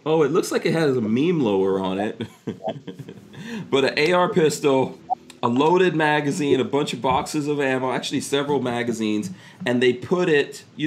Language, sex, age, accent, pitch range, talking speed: English, male, 40-59, American, 105-140 Hz, 175 wpm